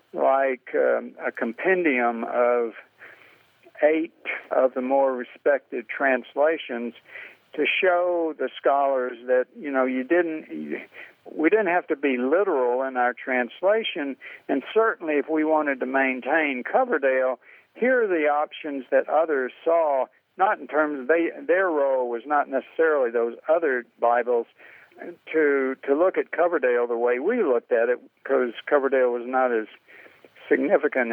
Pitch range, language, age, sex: 120-150 Hz, English, 60-79, male